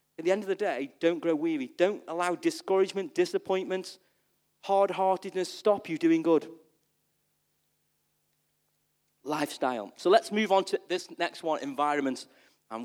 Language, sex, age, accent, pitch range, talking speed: English, male, 40-59, British, 155-220 Hz, 135 wpm